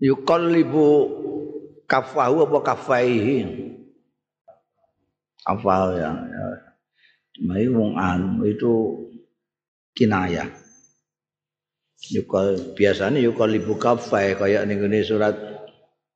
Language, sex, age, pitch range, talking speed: Indonesian, male, 50-69, 85-105 Hz, 70 wpm